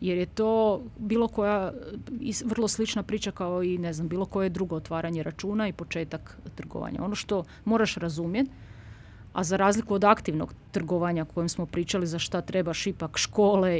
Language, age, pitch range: Croatian, 30-49, 165-205 Hz